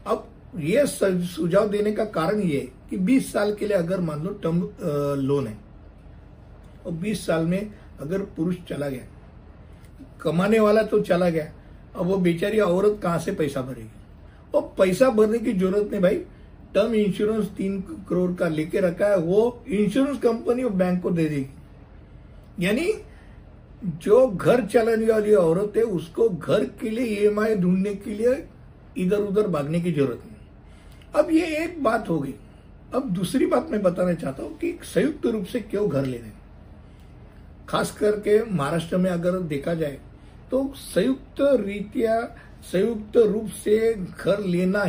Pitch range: 165-215 Hz